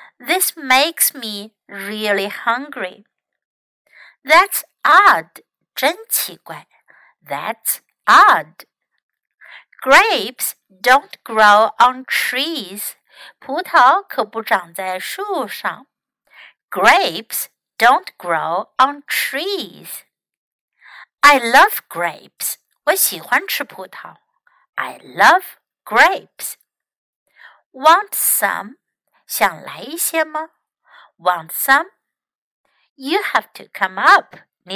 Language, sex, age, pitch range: Chinese, female, 60-79, 240-370 Hz